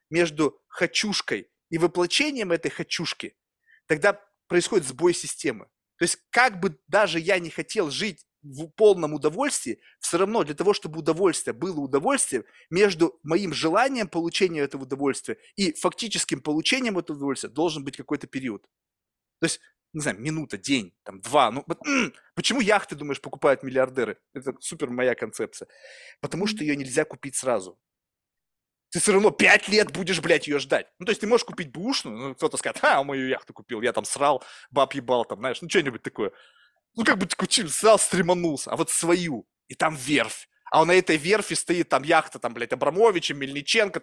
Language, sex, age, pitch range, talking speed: Russian, male, 20-39, 150-205 Hz, 170 wpm